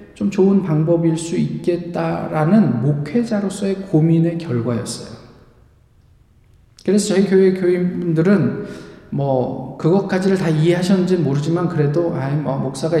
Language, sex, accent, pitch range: Korean, male, native, 150-190 Hz